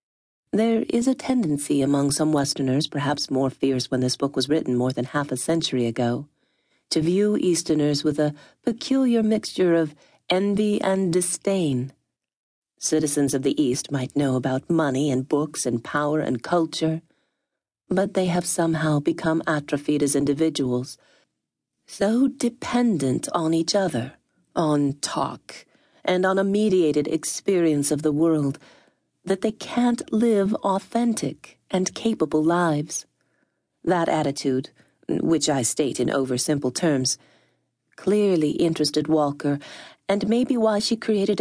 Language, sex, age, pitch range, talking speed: English, female, 40-59, 145-185 Hz, 135 wpm